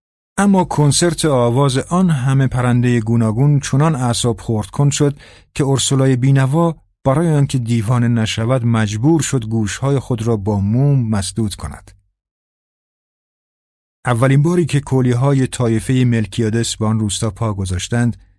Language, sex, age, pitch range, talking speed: Persian, male, 50-69, 105-135 Hz, 130 wpm